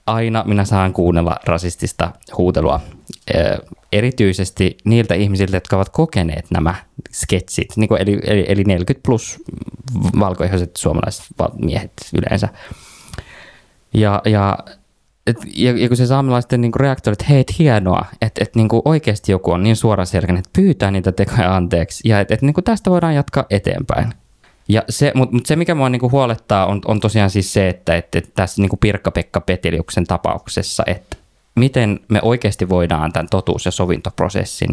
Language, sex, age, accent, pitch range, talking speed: Finnish, male, 20-39, native, 95-115 Hz, 160 wpm